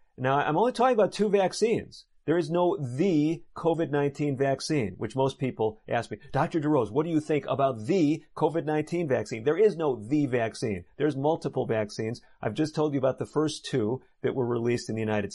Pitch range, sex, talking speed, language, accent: 110-145 Hz, male, 195 wpm, English, American